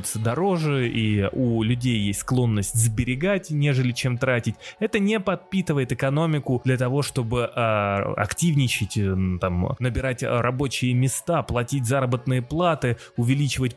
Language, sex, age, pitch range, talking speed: Russian, male, 20-39, 115-145 Hz, 115 wpm